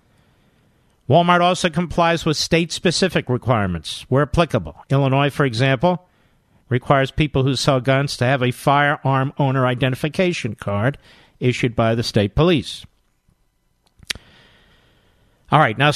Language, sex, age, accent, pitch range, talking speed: English, male, 50-69, American, 125-170 Hz, 115 wpm